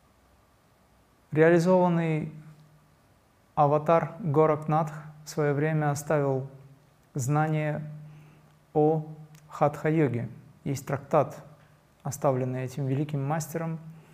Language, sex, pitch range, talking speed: Russian, male, 140-155 Hz, 70 wpm